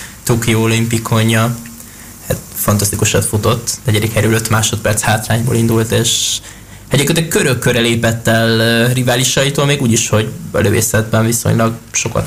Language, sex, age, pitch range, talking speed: Hungarian, male, 20-39, 110-115 Hz, 120 wpm